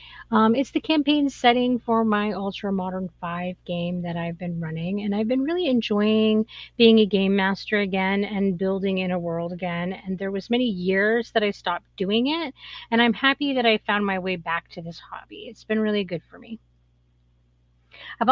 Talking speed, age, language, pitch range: 195 wpm, 30-49, English, 190-240 Hz